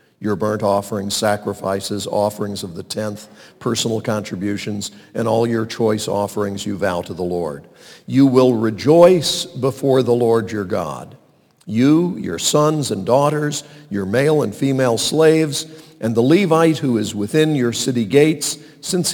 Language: English